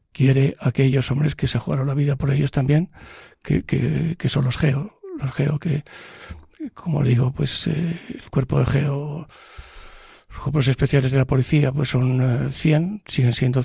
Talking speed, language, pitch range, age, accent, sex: 175 wpm, Spanish, 130-150 Hz, 60-79, Spanish, male